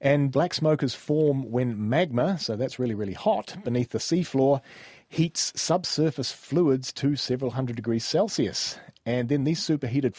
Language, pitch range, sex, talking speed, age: English, 120-145 Hz, male, 155 wpm, 30-49